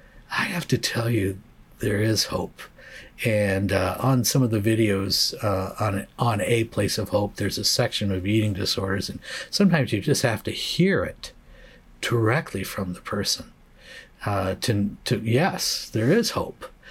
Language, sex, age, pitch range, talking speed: English, male, 50-69, 95-120 Hz, 165 wpm